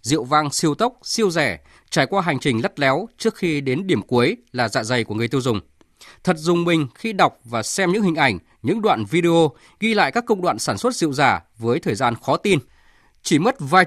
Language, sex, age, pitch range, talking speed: Vietnamese, male, 20-39, 130-190 Hz, 235 wpm